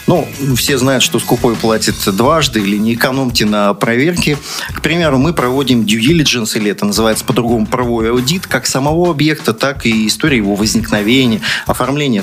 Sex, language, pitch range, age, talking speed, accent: male, Russian, 110-145 Hz, 30-49, 160 wpm, native